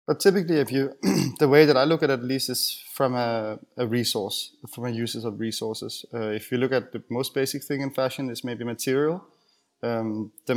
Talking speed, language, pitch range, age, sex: 220 wpm, English, 115-135 Hz, 20-39, male